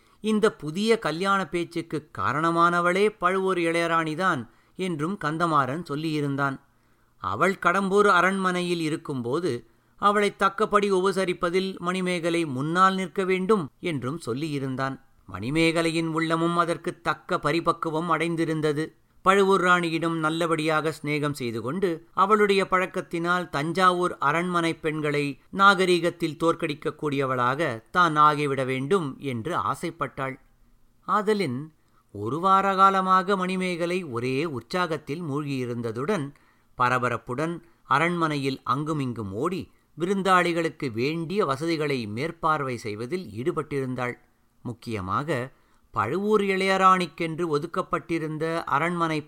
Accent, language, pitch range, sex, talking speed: native, Tamil, 140-180 Hz, male, 85 wpm